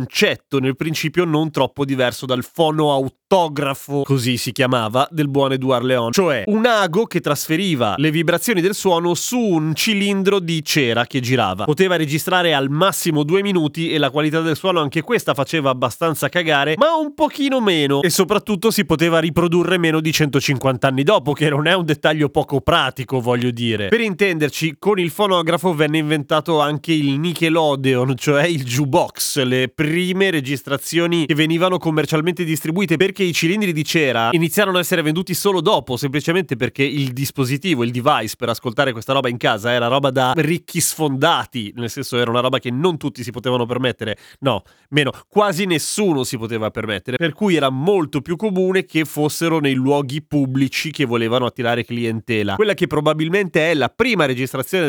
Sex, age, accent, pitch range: male, 30-49, native, 135-170 Hz